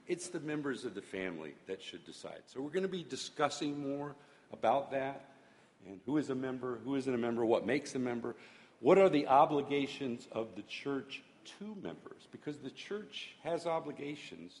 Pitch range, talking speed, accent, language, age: 100-140 Hz, 185 wpm, American, English, 50-69